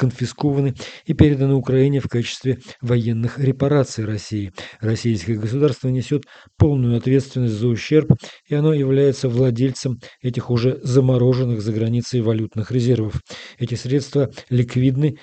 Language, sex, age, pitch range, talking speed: Russian, male, 40-59, 120-135 Hz, 120 wpm